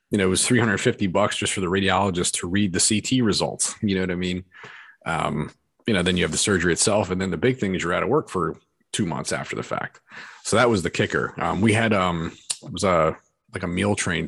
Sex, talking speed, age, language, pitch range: male, 255 wpm, 30-49, English, 90-100 Hz